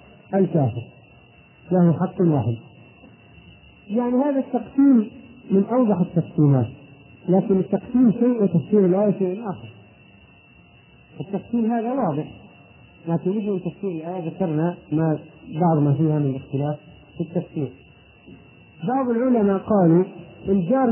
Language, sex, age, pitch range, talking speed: Arabic, male, 50-69, 145-195 Hz, 110 wpm